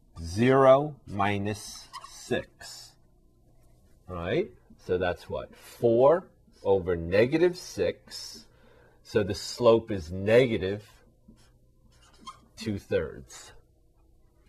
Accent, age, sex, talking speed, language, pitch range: American, 40-59, male, 75 wpm, English, 90-120 Hz